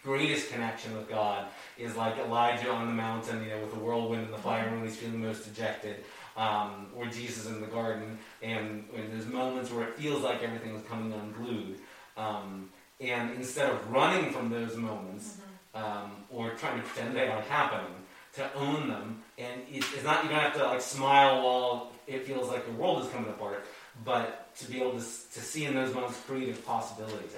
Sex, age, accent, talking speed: male, 30-49, American, 195 wpm